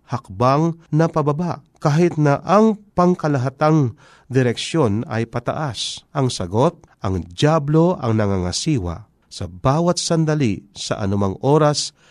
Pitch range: 110-165 Hz